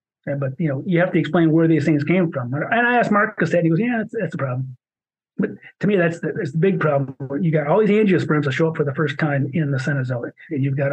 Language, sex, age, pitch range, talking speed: English, male, 30-49, 145-170 Hz, 290 wpm